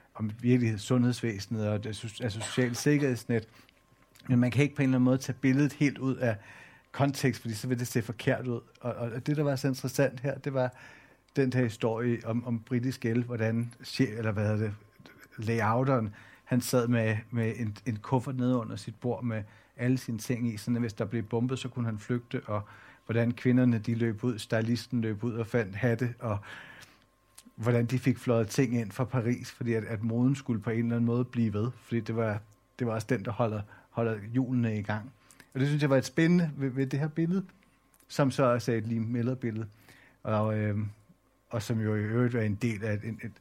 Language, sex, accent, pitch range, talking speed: Danish, male, native, 110-130 Hz, 215 wpm